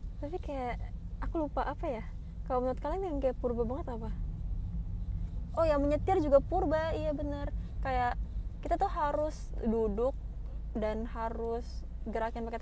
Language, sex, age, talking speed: Malay, female, 20-39, 145 wpm